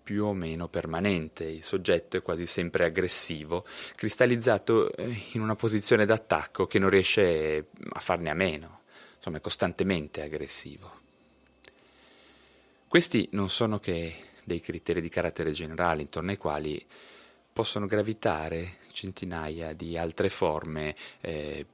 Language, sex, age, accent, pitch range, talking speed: Italian, male, 30-49, native, 80-95 Hz, 125 wpm